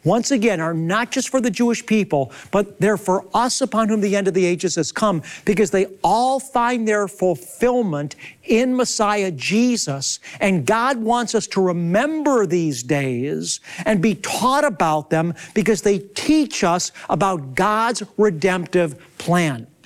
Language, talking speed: English, 155 wpm